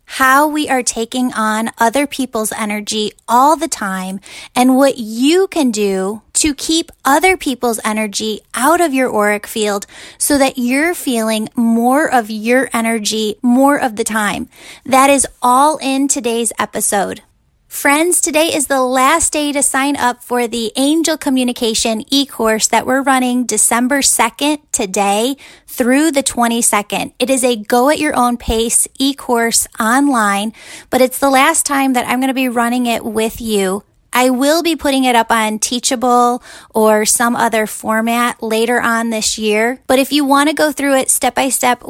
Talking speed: 165 wpm